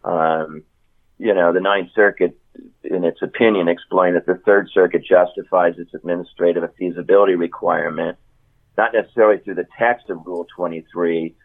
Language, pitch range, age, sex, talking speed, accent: English, 85-105 Hz, 50-69, male, 140 wpm, American